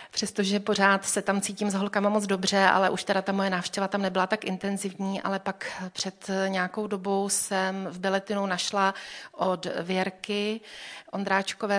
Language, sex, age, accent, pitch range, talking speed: Czech, female, 30-49, native, 185-205 Hz, 155 wpm